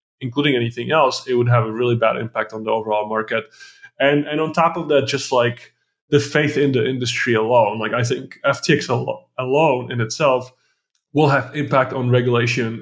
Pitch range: 115-140 Hz